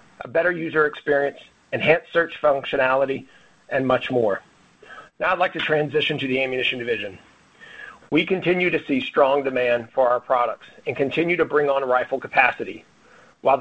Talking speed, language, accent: 160 wpm, English, American